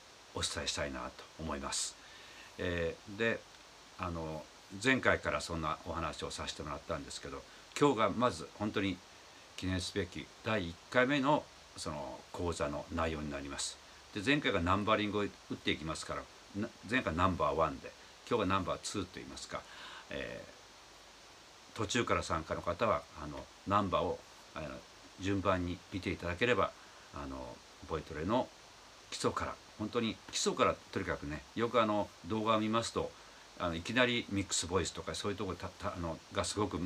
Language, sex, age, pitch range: Japanese, male, 60-79, 80-105 Hz